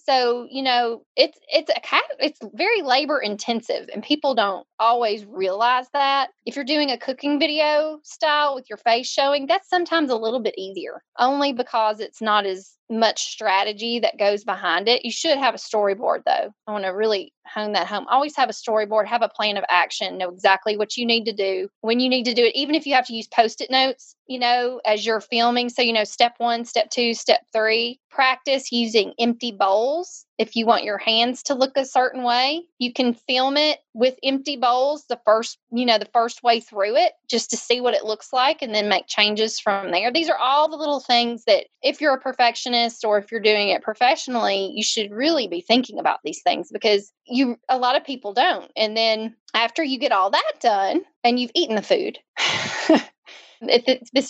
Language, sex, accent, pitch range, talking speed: English, female, American, 215-275 Hz, 215 wpm